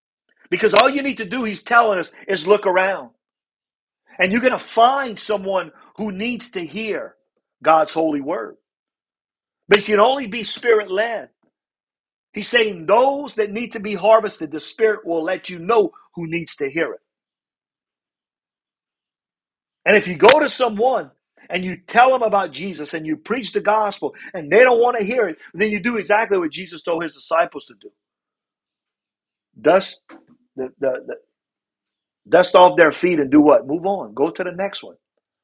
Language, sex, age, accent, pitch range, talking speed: English, male, 50-69, American, 160-230 Hz, 175 wpm